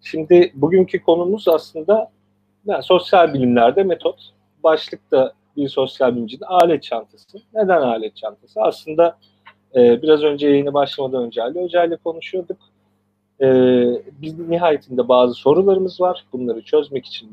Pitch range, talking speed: 110-160 Hz, 130 wpm